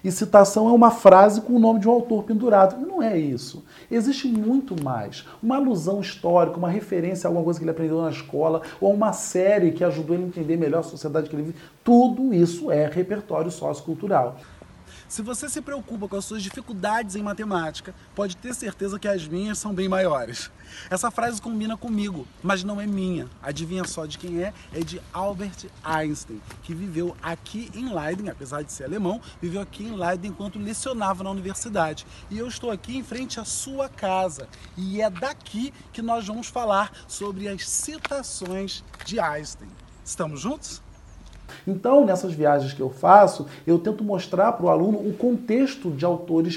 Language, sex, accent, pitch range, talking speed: Portuguese, male, Brazilian, 160-210 Hz, 185 wpm